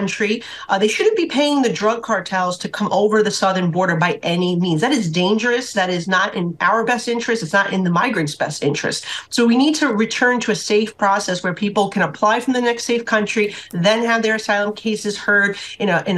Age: 40-59